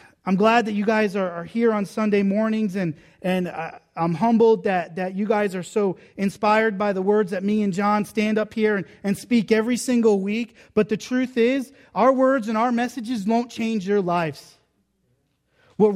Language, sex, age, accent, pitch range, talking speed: English, male, 30-49, American, 200-245 Hz, 200 wpm